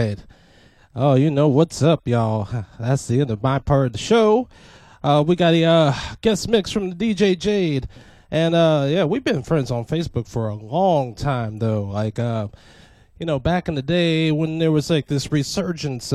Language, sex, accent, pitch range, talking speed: English, male, American, 115-155 Hz, 195 wpm